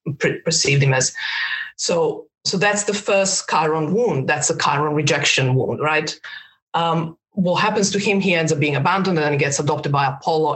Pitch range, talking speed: 150-180 Hz, 195 wpm